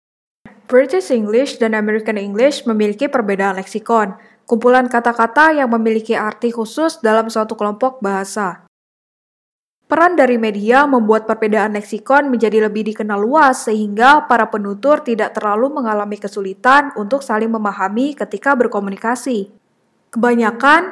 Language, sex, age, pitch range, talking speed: Indonesian, female, 10-29, 210-260 Hz, 120 wpm